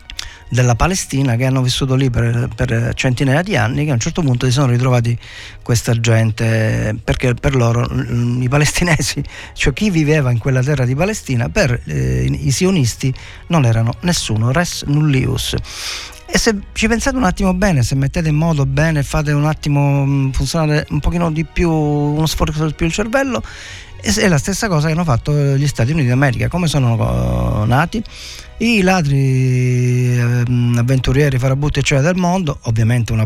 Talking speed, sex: 170 wpm, male